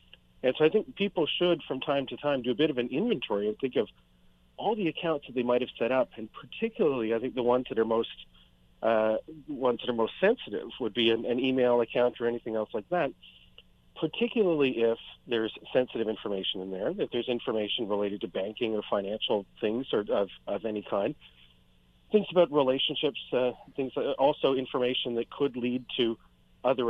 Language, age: English, 40-59